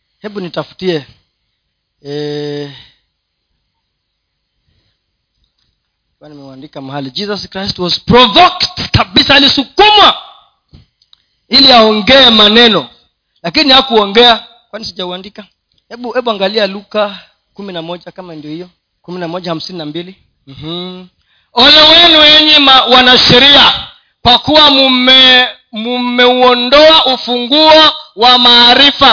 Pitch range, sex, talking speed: 205-280 Hz, male, 90 wpm